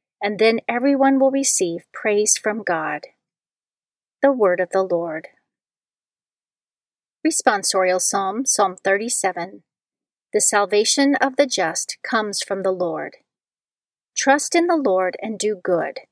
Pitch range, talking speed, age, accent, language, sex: 190-260 Hz, 125 wpm, 40-59, American, English, female